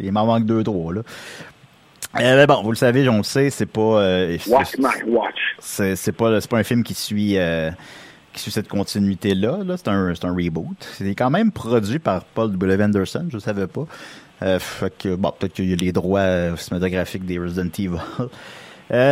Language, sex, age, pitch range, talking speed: French, male, 30-49, 95-120 Hz, 195 wpm